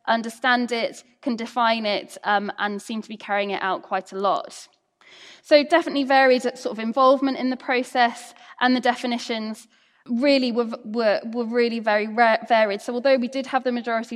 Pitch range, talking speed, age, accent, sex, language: 210-250 Hz, 185 wpm, 10-29, British, female, English